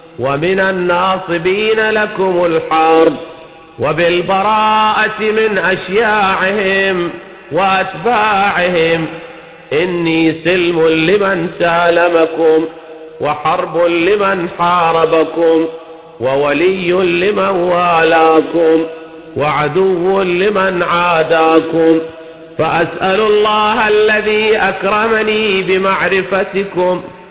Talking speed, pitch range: 55 wpm, 165-190 Hz